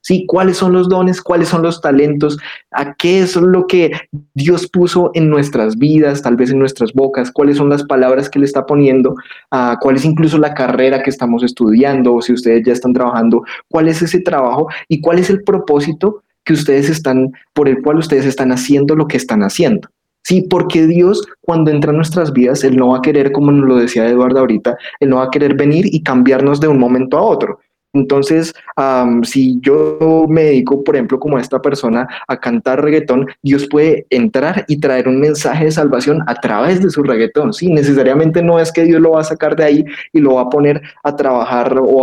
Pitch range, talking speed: 130-165 Hz, 210 wpm